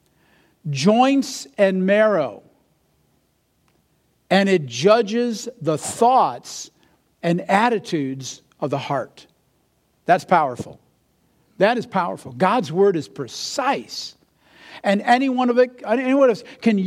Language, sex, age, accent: English, male, 50-69, American